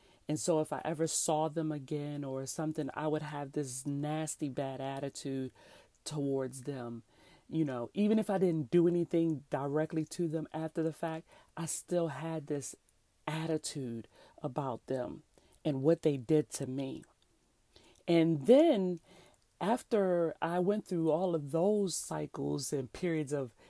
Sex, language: female, English